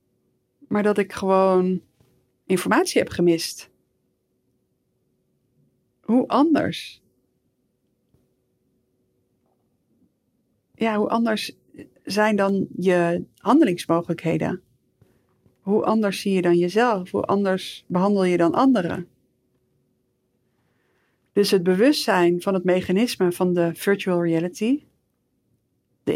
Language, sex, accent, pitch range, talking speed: Dutch, female, Dutch, 165-200 Hz, 90 wpm